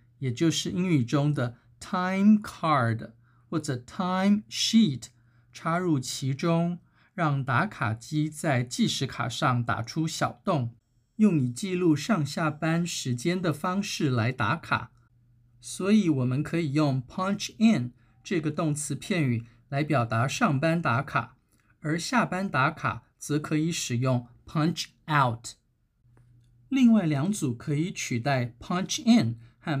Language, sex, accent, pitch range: Chinese, male, native, 120-170 Hz